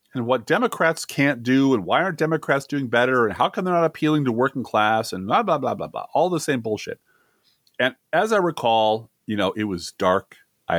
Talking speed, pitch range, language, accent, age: 225 wpm, 120-185 Hz, English, American, 40-59